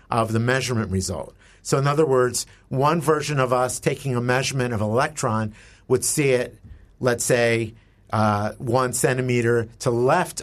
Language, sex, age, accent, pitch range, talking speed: English, male, 50-69, American, 110-130 Hz, 165 wpm